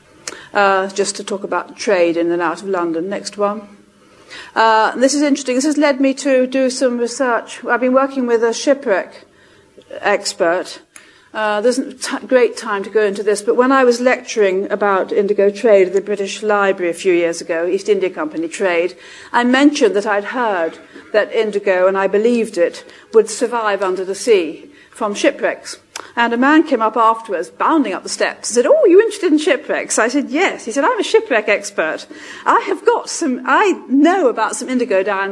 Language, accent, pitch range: English, British, 200-285 Hz